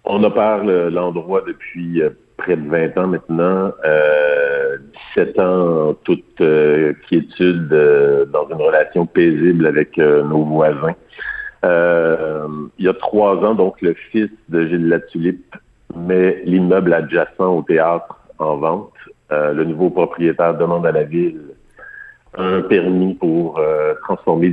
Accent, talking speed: French, 140 wpm